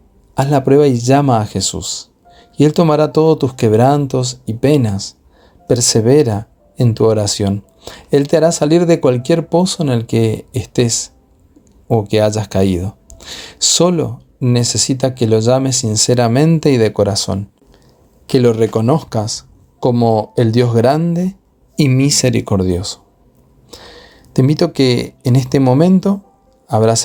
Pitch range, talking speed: 110-135 Hz, 135 wpm